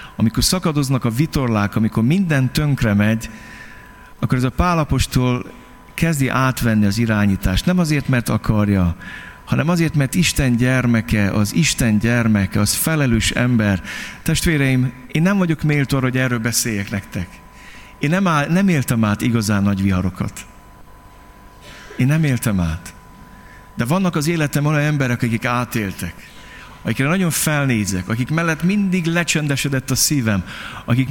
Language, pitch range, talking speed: Hungarian, 110-170 Hz, 135 wpm